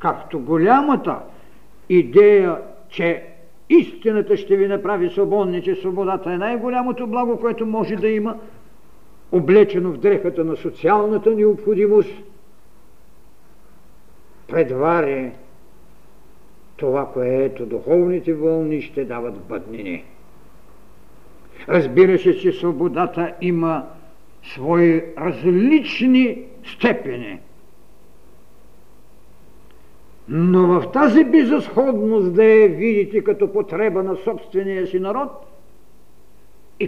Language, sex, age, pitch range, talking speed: Bulgarian, male, 60-79, 140-215 Hz, 90 wpm